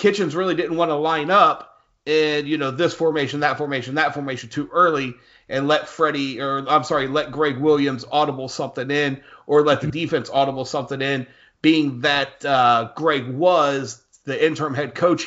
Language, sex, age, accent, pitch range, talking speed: English, male, 30-49, American, 135-155 Hz, 180 wpm